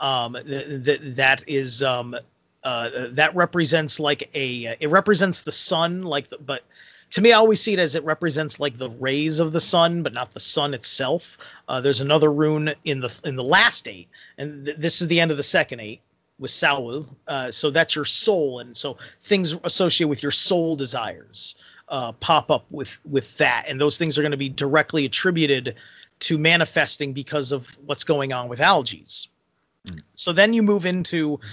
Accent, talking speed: American, 200 wpm